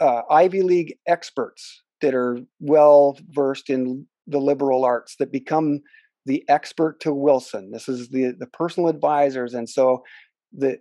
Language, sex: English, male